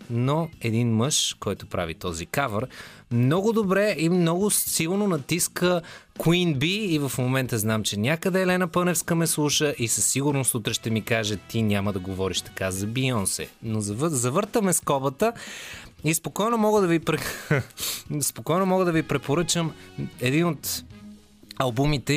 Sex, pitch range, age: male, 115-165 Hz, 20-39